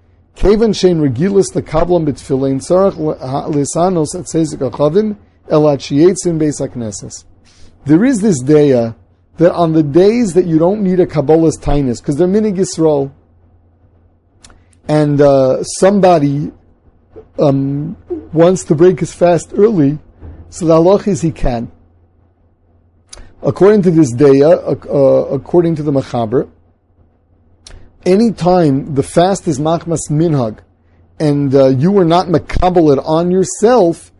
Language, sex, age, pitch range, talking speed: English, male, 40-59, 115-175 Hz, 105 wpm